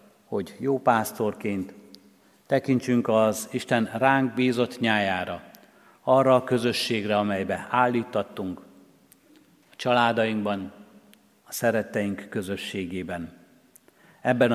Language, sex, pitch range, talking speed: Hungarian, male, 105-125 Hz, 85 wpm